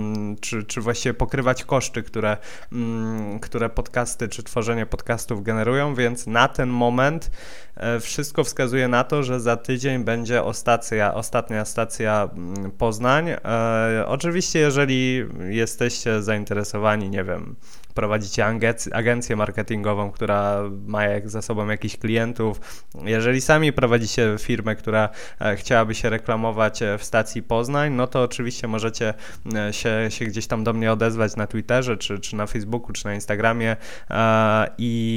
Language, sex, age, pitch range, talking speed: Polish, male, 20-39, 110-125 Hz, 130 wpm